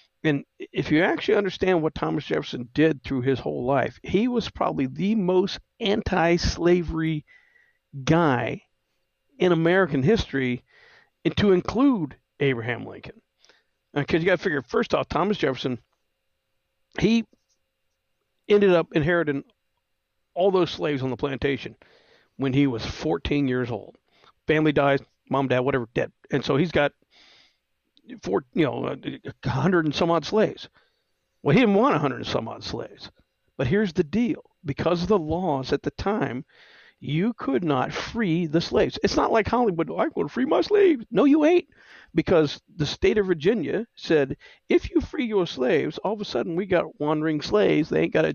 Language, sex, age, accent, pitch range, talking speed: English, male, 50-69, American, 140-200 Hz, 165 wpm